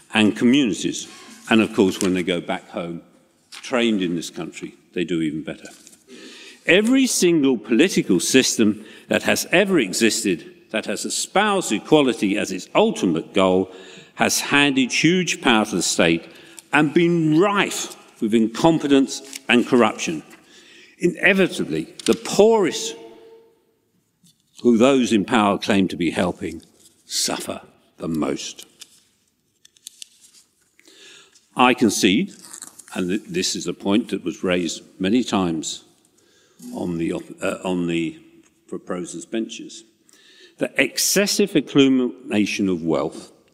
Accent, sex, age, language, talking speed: British, male, 50-69, English, 115 wpm